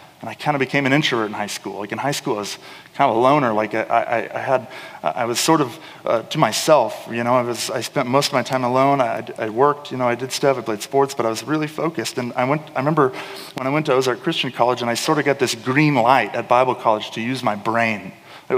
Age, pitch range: 30-49, 115-145 Hz